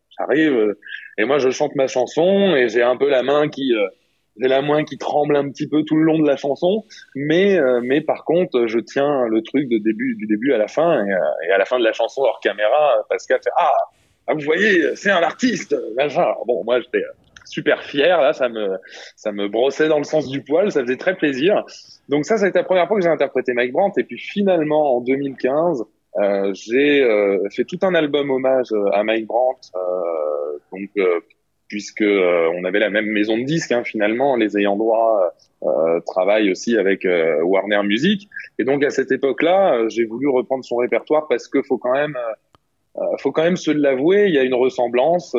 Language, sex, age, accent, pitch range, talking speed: French, male, 20-39, French, 115-160 Hz, 220 wpm